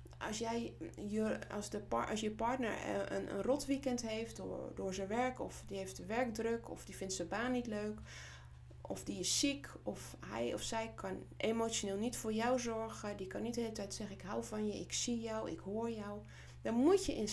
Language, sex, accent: Dutch, female, Dutch